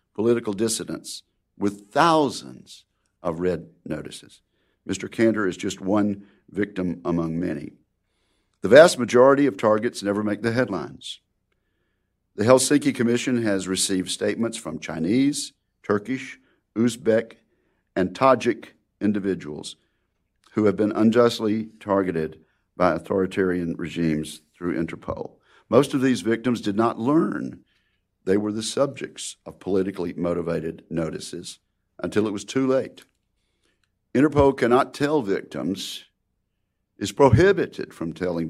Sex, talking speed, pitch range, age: male, 115 wpm, 95-115 Hz, 50-69